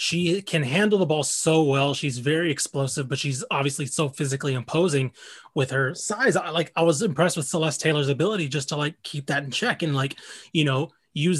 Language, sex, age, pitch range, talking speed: English, male, 20-39, 135-170 Hz, 210 wpm